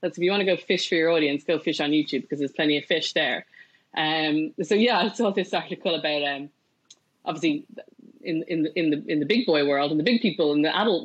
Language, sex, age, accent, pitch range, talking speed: English, female, 20-39, Irish, 145-165 Hz, 260 wpm